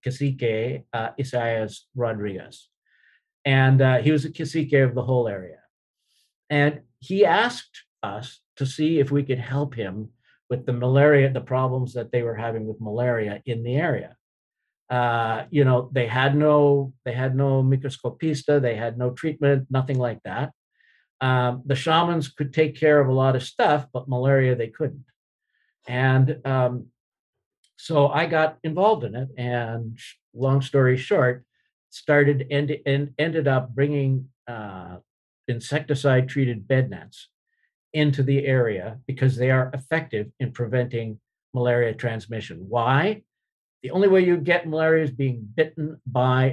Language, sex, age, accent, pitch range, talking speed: English, male, 50-69, American, 120-145 Hz, 150 wpm